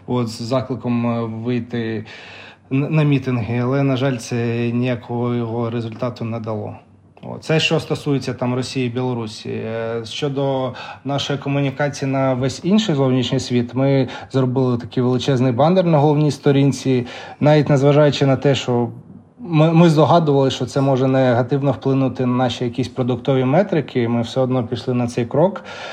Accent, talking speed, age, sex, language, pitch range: native, 150 wpm, 20-39, male, Ukrainian, 125-140 Hz